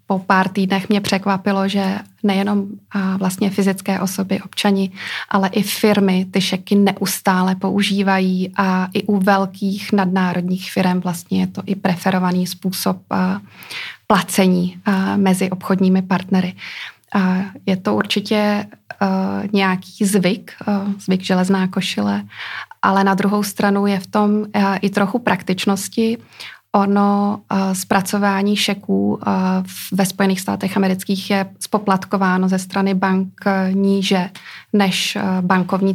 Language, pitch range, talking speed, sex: Czech, 190-205 Hz, 110 wpm, female